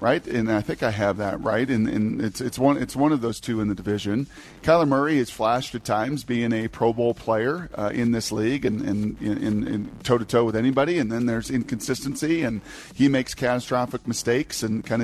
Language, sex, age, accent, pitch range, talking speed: English, male, 40-59, American, 110-135 Hz, 220 wpm